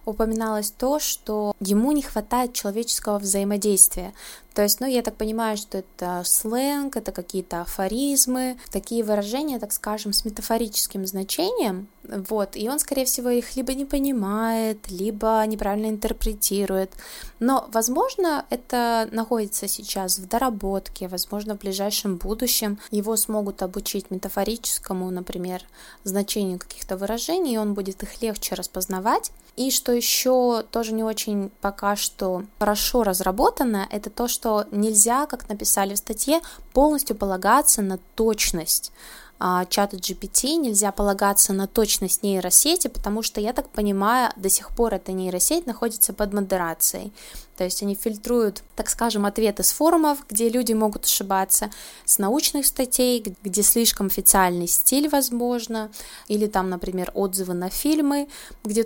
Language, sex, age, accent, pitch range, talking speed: Russian, female, 20-39, native, 195-240 Hz, 140 wpm